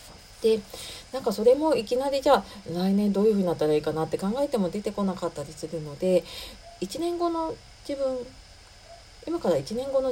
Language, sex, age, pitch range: Japanese, female, 40-59, 160-235 Hz